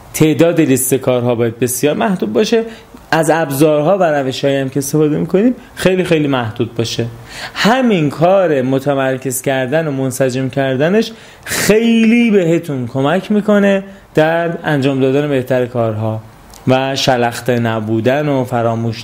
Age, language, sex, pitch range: 30-49, Persian, male, 120-150 Hz